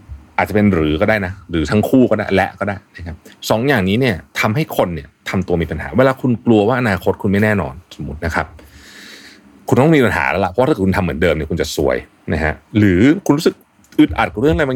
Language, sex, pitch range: Thai, male, 85-120 Hz